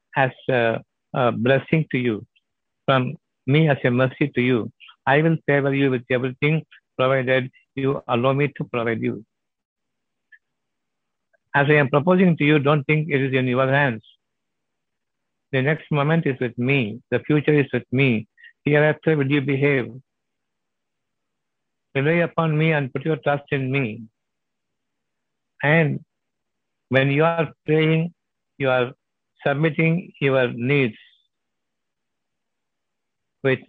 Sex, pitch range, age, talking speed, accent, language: male, 125-150 Hz, 60-79, 135 wpm, native, Tamil